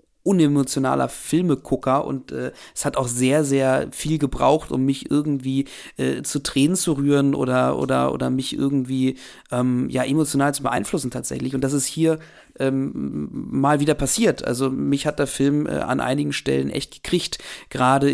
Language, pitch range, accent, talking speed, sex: German, 135-145 Hz, German, 165 wpm, male